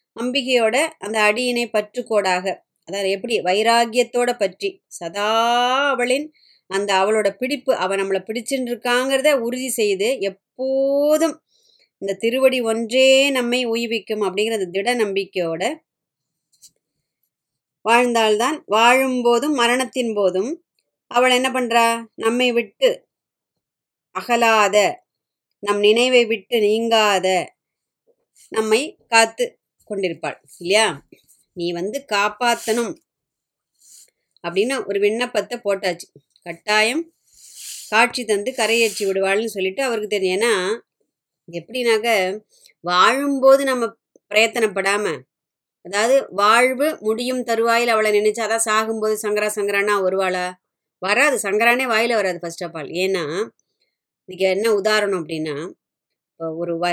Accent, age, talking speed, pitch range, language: native, 20-39, 95 wpm, 195-250 Hz, Tamil